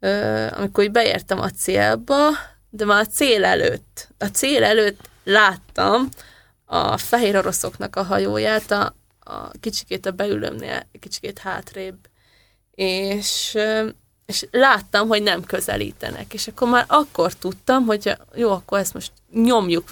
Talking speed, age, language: 130 wpm, 20-39, Hungarian